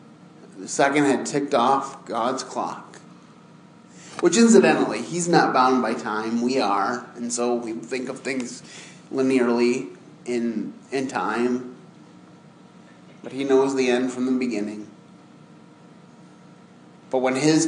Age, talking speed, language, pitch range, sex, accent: 30-49, 125 wpm, English, 115-135 Hz, male, American